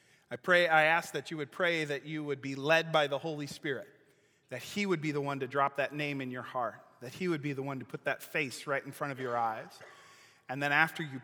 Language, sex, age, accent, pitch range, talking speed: English, male, 30-49, American, 135-165 Hz, 265 wpm